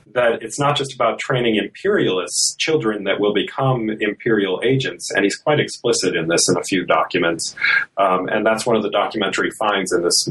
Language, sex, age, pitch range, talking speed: English, male, 30-49, 95-135 Hz, 190 wpm